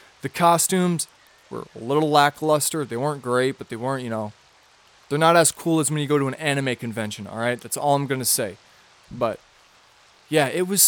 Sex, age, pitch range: male, 20-39, 120-155 Hz